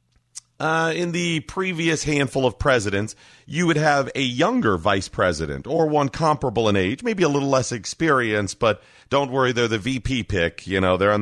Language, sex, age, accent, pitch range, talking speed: English, male, 40-59, American, 100-140 Hz, 185 wpm